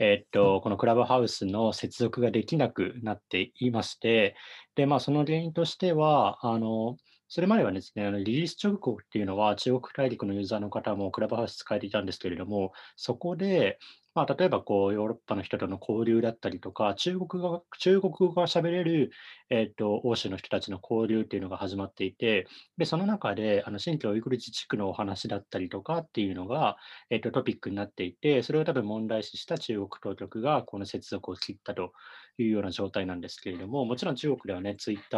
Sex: male